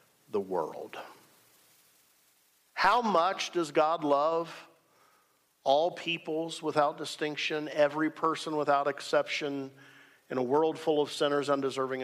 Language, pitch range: English, 125-160 Hz